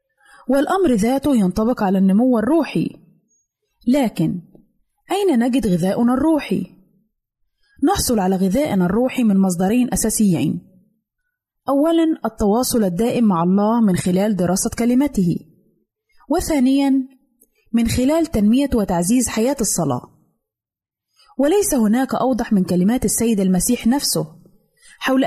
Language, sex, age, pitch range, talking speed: Arabic, female, 20-39, 195-255 Hz, 100 wpm